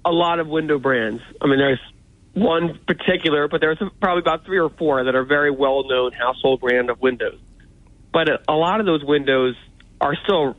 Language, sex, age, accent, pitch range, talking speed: English, male, 30-49, American, 130-160 Hz, 185 wpm